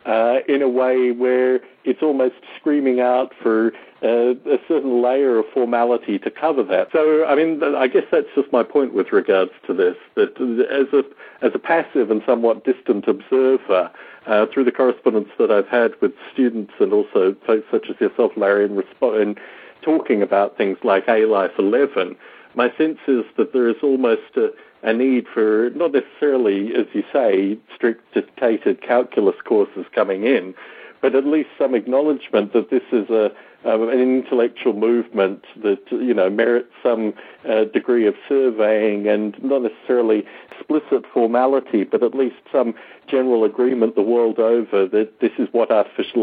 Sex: male